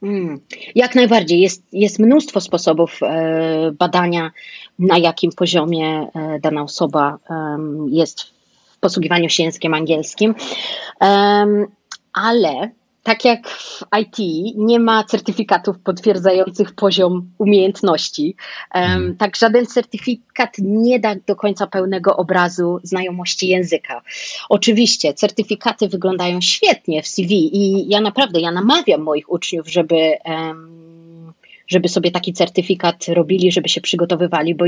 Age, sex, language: 30-49, female, Polish